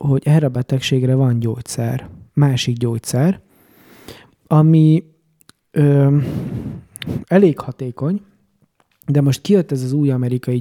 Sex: male